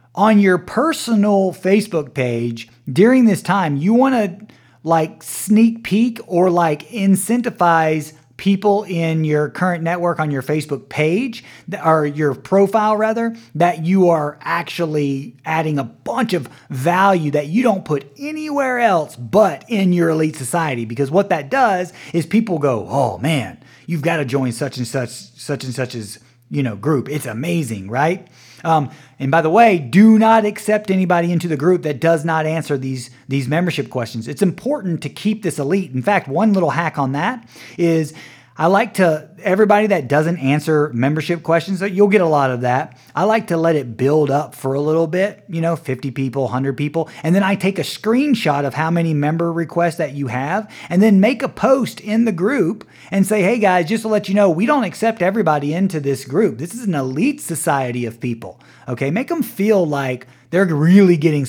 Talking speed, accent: 190 wpm, American